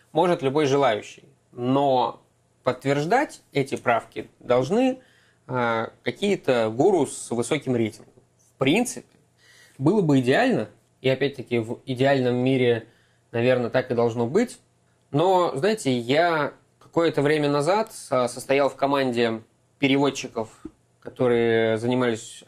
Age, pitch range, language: 20-39, 120-145 Hz, Russian